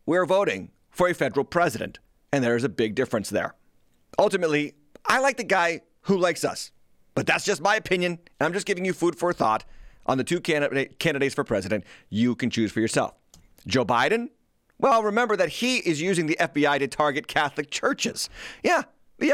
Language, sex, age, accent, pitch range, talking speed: English, male, 30-49, American, 130-185 Hz, 190 wpm